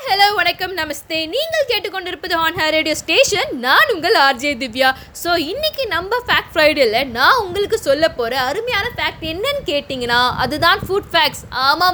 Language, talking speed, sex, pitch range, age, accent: Tamil, 145 wpm, female, 280-380 Hz, 20-39, native